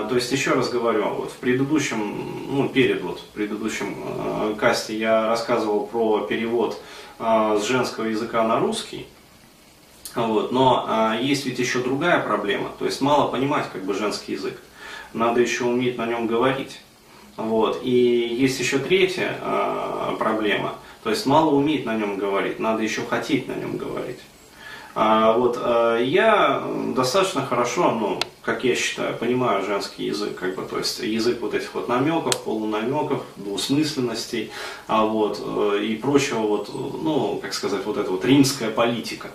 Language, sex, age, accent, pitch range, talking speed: Russian, male, 30-49, native, 110-135 Hz, 160 wpm